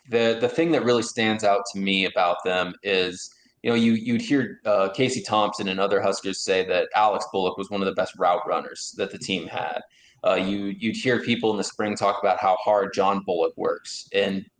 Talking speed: 220 wpm